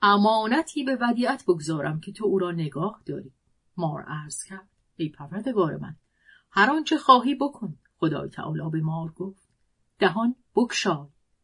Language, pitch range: Persian, 170-230 Hz